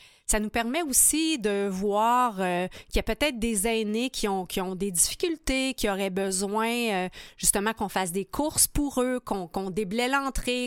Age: 30-49